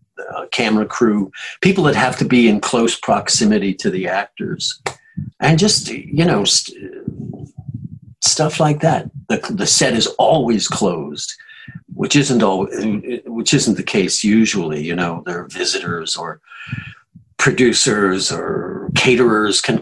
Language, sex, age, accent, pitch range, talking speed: English, male, 50-69, American, 105-140 Hz, 140 wpm